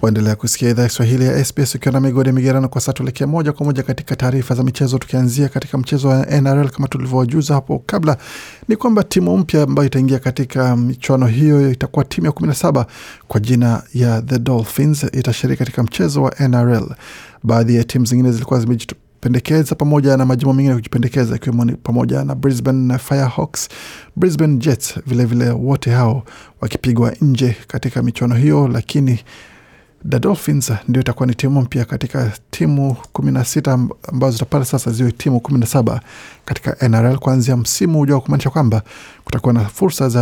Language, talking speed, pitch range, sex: Swahili, 165 wpm, 120-140 Hz, male